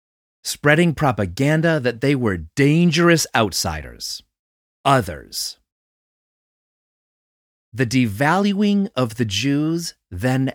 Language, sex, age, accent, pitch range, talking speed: English, male, 30-49, American, 105-155 Hz, 80 wpm